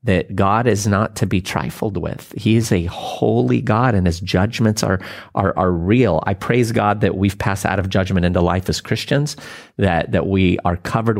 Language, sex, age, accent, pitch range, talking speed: English, male, 30-49, American, 90-110 Hz, 205 wpm